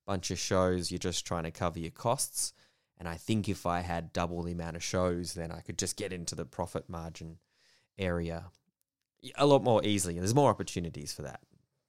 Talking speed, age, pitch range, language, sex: 210 wpm, 20-39, 85-100 Hz, English, male